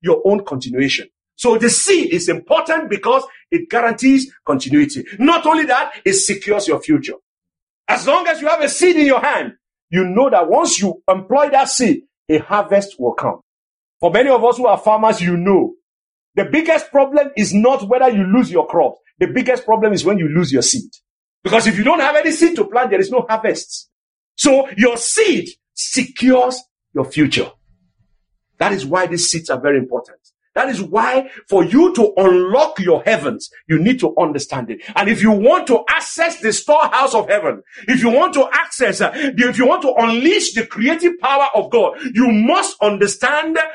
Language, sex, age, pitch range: English, male, 50-69, 195-300 Hz